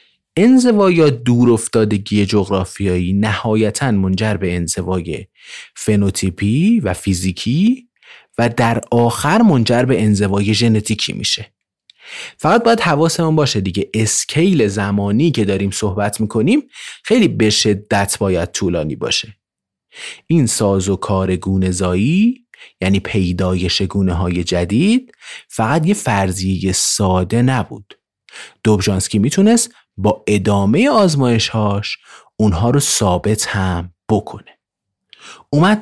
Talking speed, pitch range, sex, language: 105 wpm, 95-135 Hz, male, Persian